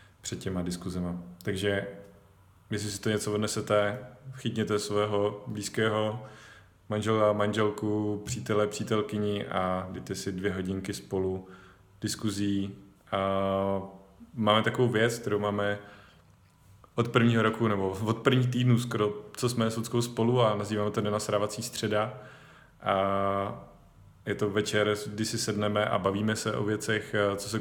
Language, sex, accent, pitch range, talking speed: Czech, male, native, 100-115 Hz, 135 wpm